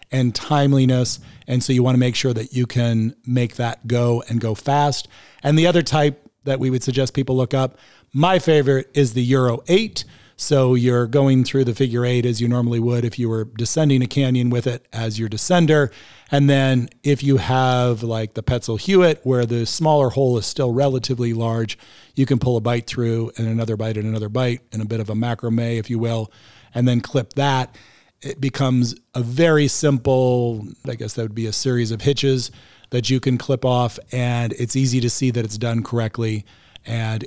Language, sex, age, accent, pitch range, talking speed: English, male, 40-59, American, 115-130 Hz, 205 wpm